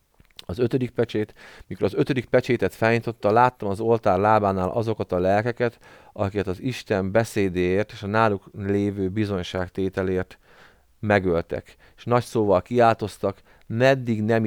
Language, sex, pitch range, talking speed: Hungarian, male, 95-105 Hz, 130 wpm